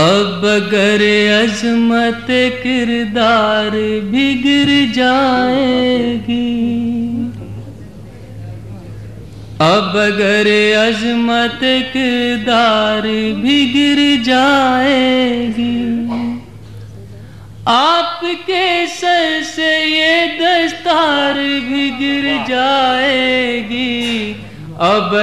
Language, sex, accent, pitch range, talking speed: Hindi, male, native, 220-275 Hz, 45 wpm